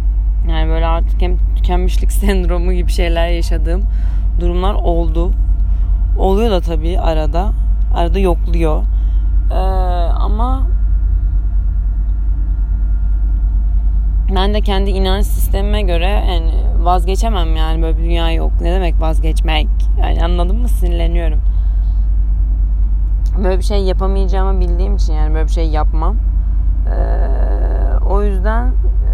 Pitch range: 80-95 Hz